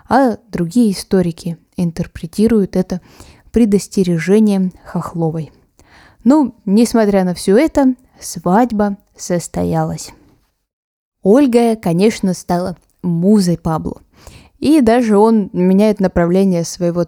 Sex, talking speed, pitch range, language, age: female, 90 wpm, 175-235 Hz, Russian, 20-39